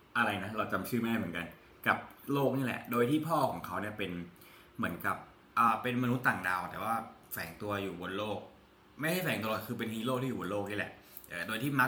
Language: Thai